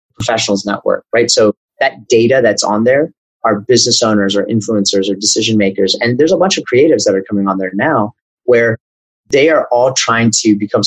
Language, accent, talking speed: English, American, 200 wpm